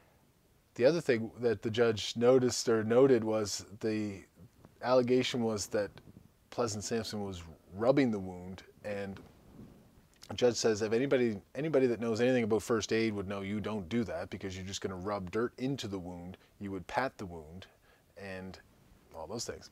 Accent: American